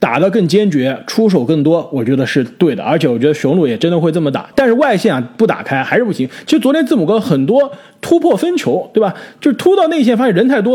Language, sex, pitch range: Chinese, male, 160-245 Hz